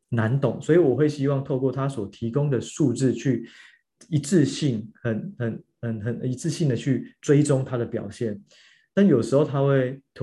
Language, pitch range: Chinese, 115-140 Hz